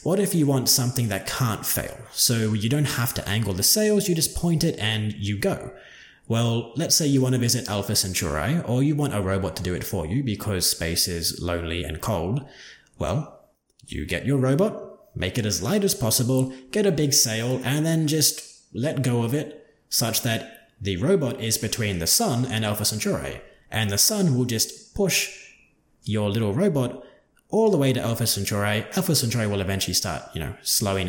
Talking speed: 200 wpm